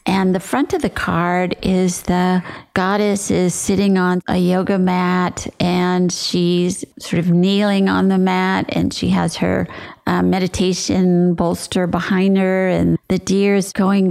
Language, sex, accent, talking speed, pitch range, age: English, female, American, 155 wpm, 175-195 Hz, 50-69